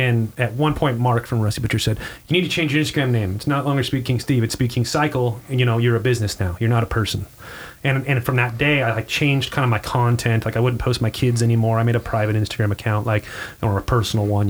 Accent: American